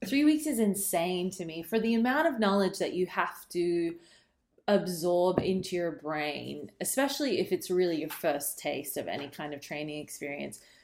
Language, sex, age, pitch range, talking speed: English, female, 20-39, 155-195 Hz, 175 wpm